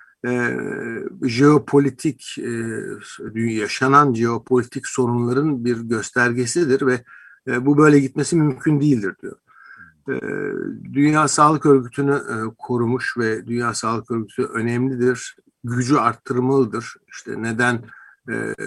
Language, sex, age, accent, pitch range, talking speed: Turkish, male, 60-79, native, 115-140 Hz, 105 wpm